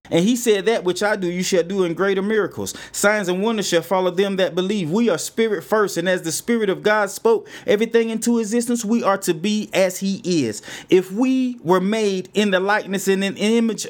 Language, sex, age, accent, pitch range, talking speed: English, male, 30-49, American, 185-225 Hz, 225 wpm